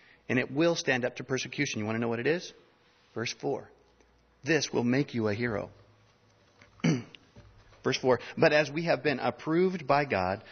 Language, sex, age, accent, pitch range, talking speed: English, male, 40-59, American, 115-155 Hz, 185 wpm